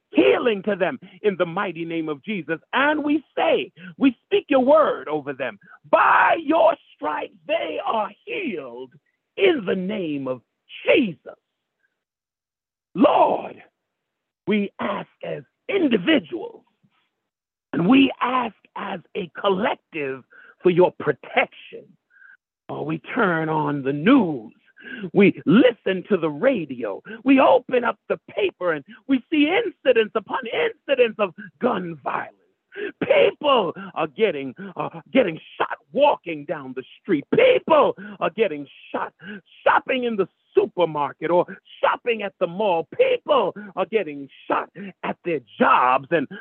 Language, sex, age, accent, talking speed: English, male, 50-69, American, 130 wpm